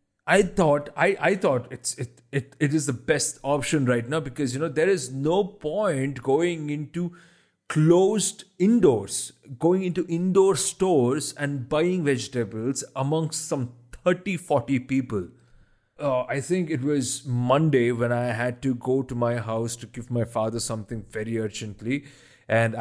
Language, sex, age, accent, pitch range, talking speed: English, male, 30-49, Indian, 120-150 Hz, 160 wpm